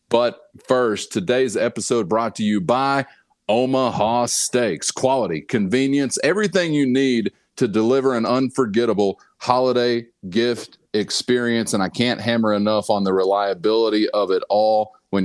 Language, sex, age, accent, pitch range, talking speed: English, male, 30-49, American, 100-130 Hz, 135 wpm